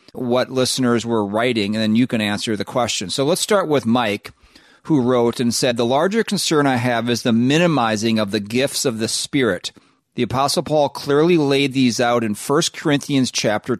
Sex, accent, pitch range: male, American, 115-140 Hz